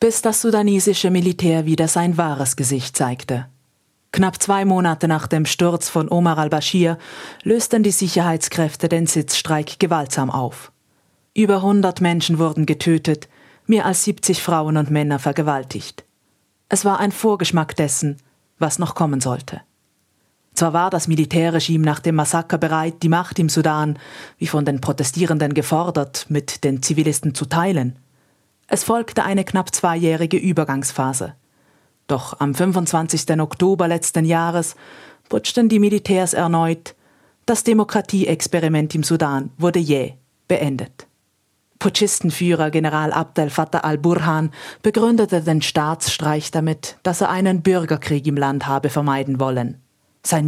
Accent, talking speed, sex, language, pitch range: German, 130 wpm, female, German, 150-180 Hz